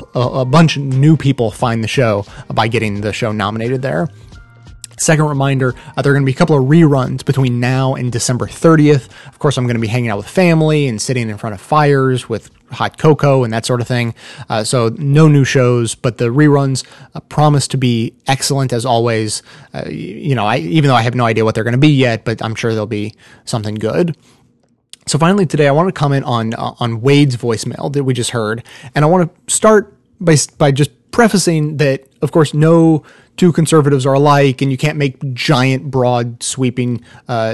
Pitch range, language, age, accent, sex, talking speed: 120-150 Hz, English, 20-39, American, male, 215 wpm